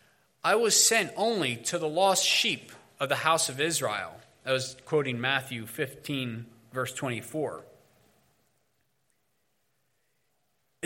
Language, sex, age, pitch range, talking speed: English, male, 20-39, 125-165 Hz, 110 wpm